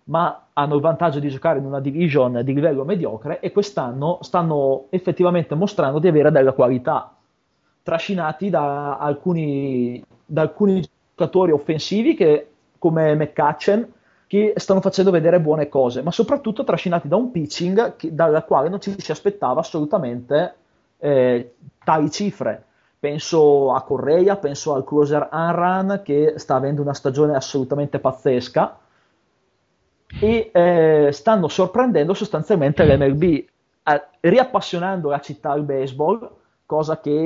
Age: 30-49